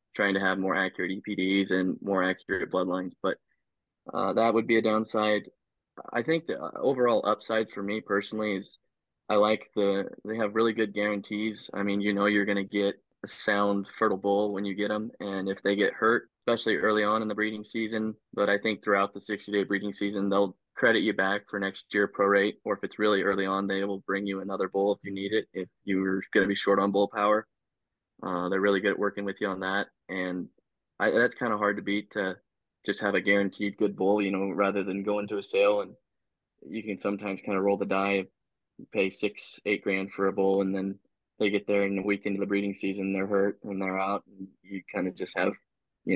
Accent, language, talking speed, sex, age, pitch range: American, English, 230 wpm, male, 10-29, 95-105 Hz